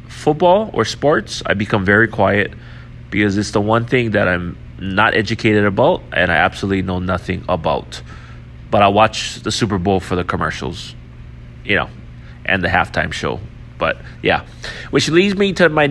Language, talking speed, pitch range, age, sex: English, 170 wpm, 95-125 Hz, 30-49, male